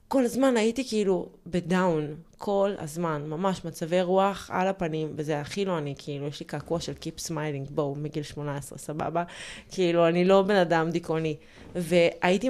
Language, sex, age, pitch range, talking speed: Hebrew, female, 20-39, 170-210 Hz, 165 wpm